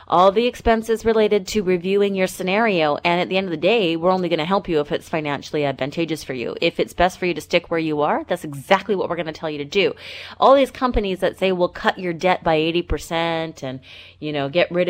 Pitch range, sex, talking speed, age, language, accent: 145-185 Hz, female, 255 wpm, 30-49, English, American